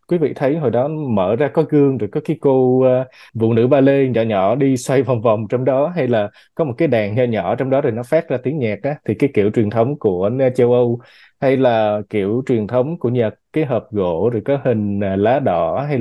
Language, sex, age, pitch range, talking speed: Vietnamese, male, 20-39, 110-145 Hz, 255 wpm